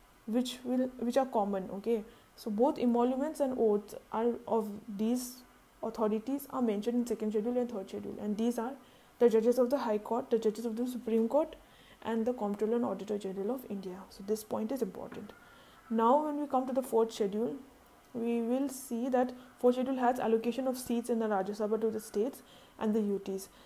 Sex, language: female, English